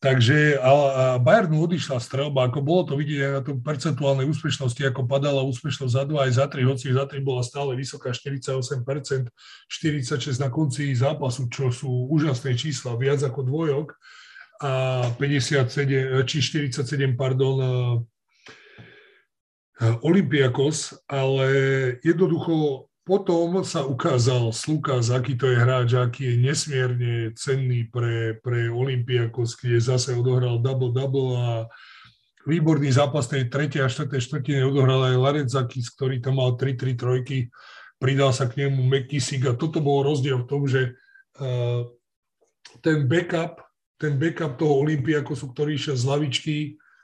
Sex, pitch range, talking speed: male, 125-145 Hz, 135 wpm